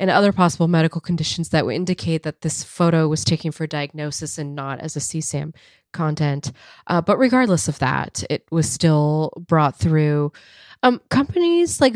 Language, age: English, 20-39